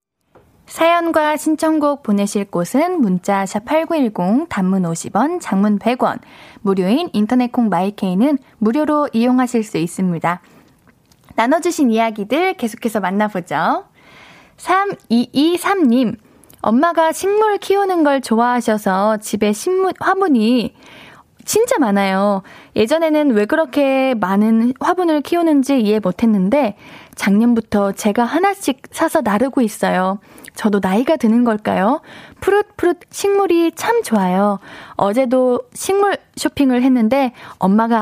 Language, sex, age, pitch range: Korean, female, 10-29, 215-315 Hz